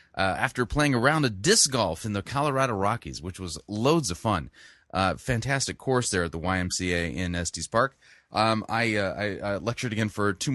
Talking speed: 205 wpm